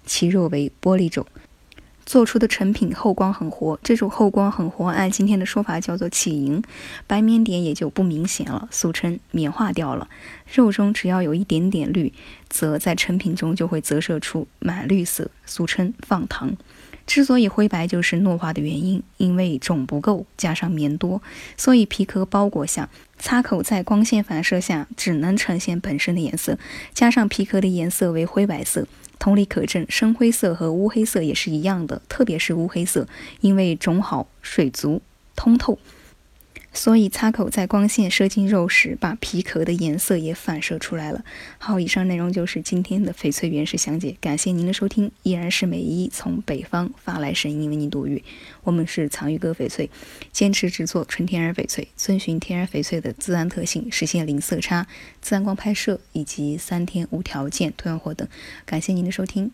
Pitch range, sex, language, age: 165-205 Hz, female, Chinese, 10-29